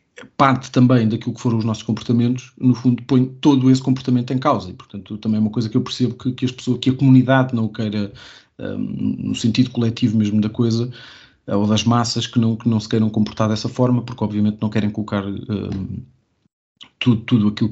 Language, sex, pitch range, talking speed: Portuguese, male, 110-140 Hz, 215 wpm